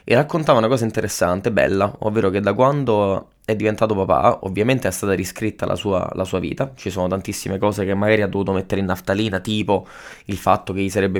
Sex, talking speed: male, 210 wpm